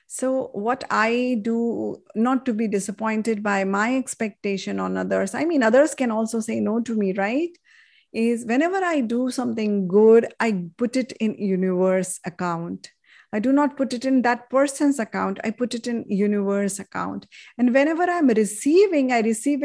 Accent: Indian